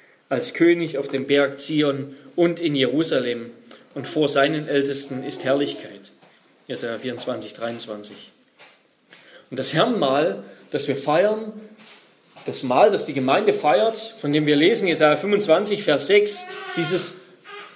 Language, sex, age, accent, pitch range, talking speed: German, male, 40-59, German, 145-220 Hz, 130 wpm